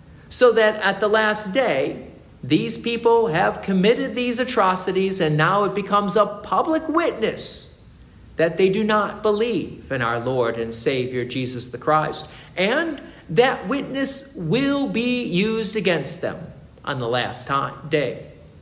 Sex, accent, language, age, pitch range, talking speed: male, American, English, 50-69, 140-215 Hz, 140 wpm